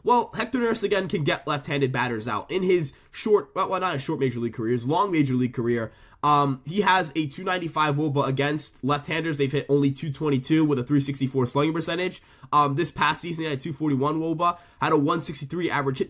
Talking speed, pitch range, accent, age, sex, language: 210 wpm, 140-180 Hz, American, 20-39, male, English